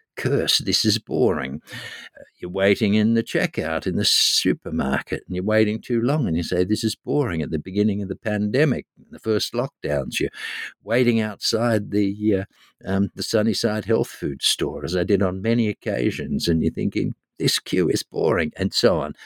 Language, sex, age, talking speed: English, male, 60-79, 185 wpm